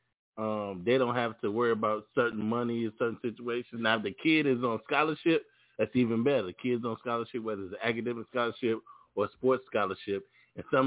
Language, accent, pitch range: English, American, 115-130 Hz